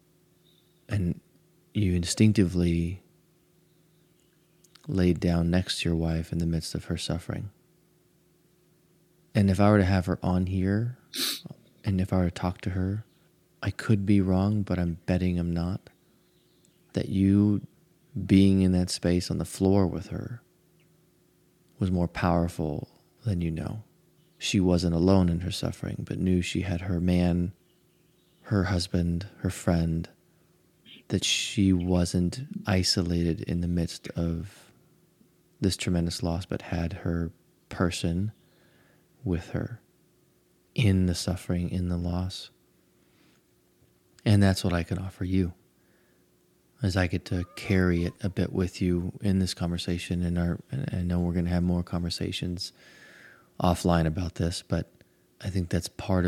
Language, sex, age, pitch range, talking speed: English, male, 30-49, 85-110 Hz, 145 wpm